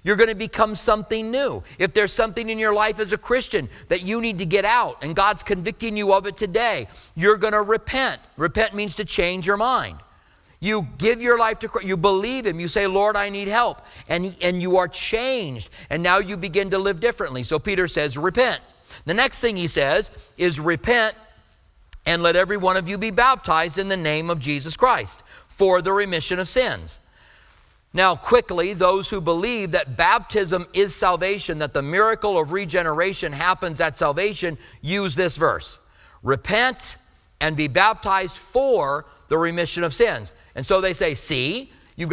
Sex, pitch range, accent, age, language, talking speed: male, 170-220 Hz, American, 50-69, English, 185 wpm